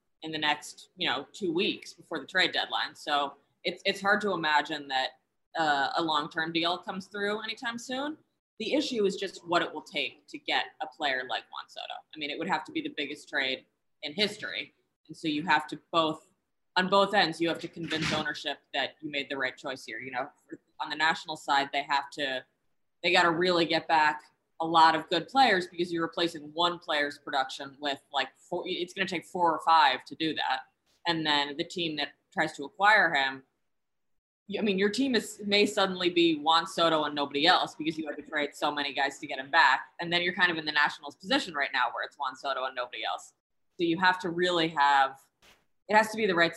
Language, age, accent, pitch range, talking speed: English, 20-39, American, 150-195 Hz, 230 wpm